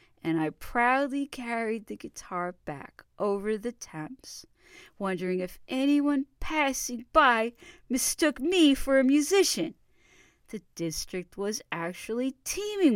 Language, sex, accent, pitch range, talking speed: English, female, American, 160-240 Hz, 115 wpm